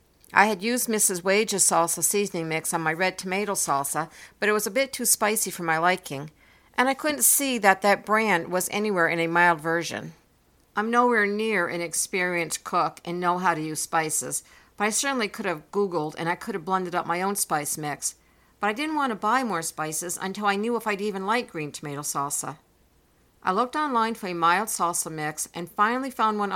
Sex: female